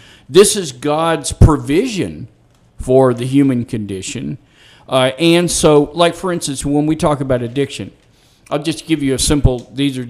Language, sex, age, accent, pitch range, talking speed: English, male, 50-69, American, 120-145 Hz, 160 wpm